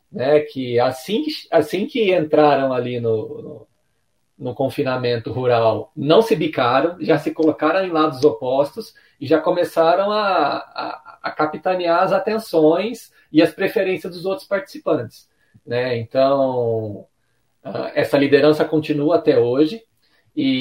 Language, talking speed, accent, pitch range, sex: Portuguese, 130 wpm, Brazilian, 130-170 Hz, male